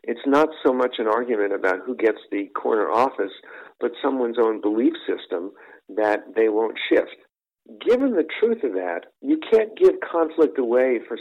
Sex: male